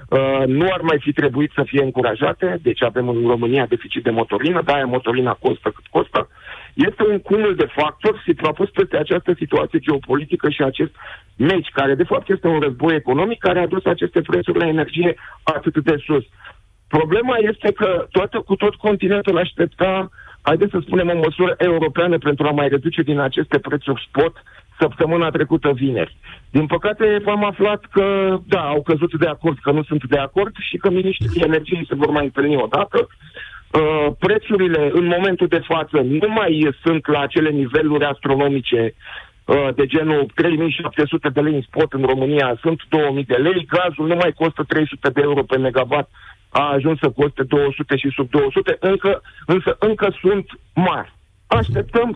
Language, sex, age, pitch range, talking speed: Romanian, male, 50-69, 145-185 Hz, 175 wpm